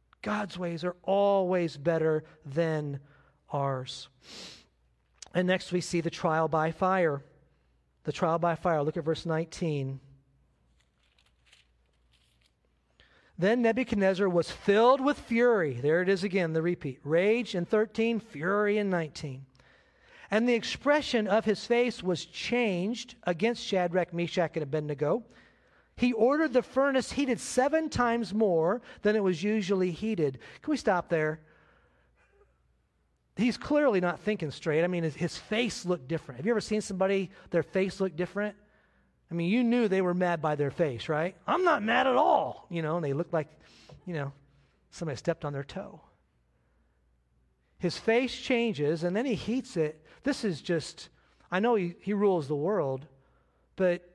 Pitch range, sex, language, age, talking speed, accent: 150-210 Hz, male, English, 40-59, 155 wpm, American